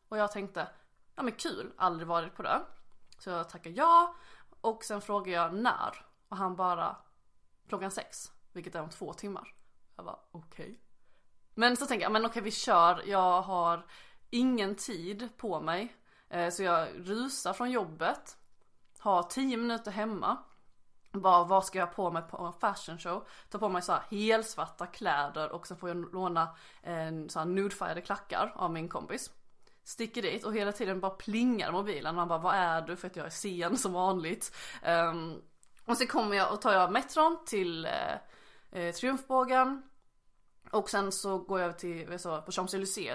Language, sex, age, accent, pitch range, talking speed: Swedish, female, 20-39, native, 175-230 Hz, 180 wpm